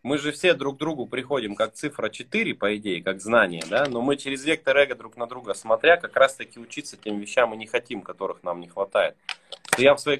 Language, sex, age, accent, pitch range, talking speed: Russian, male, 20-39, native, 115-145 Hz, 240 wpm